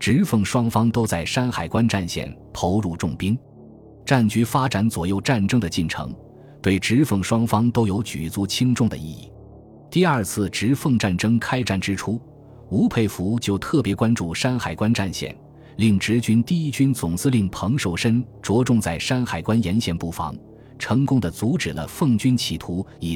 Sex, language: male, Chinese